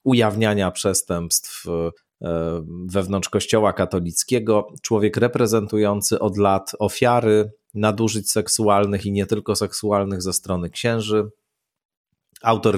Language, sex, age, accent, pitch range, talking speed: Polish, male, 30-49, native, 95-120 Hz, 95 wpm